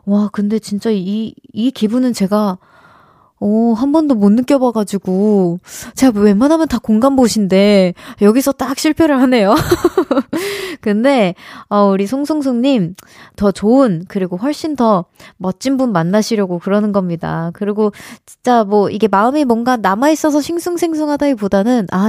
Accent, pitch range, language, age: native, 195-275 Hz, Korean, 20-39